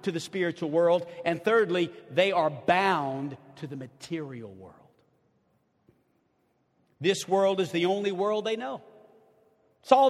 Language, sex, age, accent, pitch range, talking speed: English, male, 50-69, American, 195-265 Hz, 135 wpm